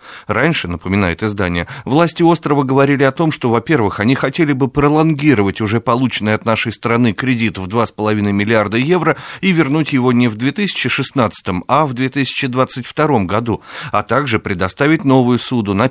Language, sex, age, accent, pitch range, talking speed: Russian, male, 30-49, native, 100-130 Hz, 150 wpm